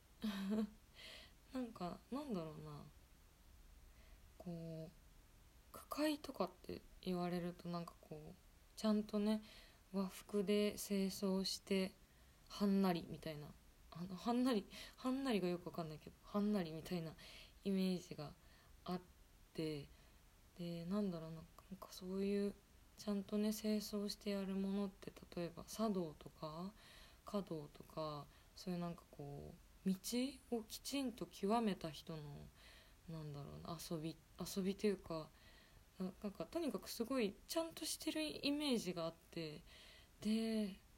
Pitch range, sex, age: 160-210 Hz, female, 20-39